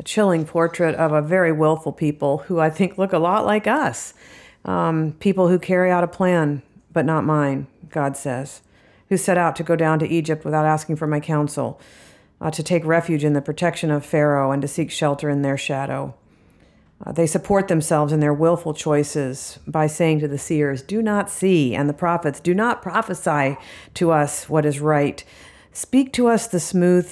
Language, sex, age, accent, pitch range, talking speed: English, female, 50-69, American, 145-175 Hz, 195 wpm